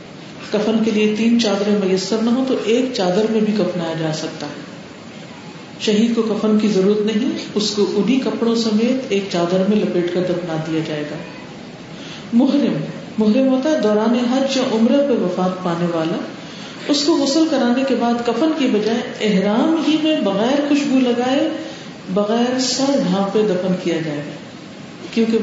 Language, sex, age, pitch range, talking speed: Urdu, female, 50-69, 190-255 Hz, 170 wpm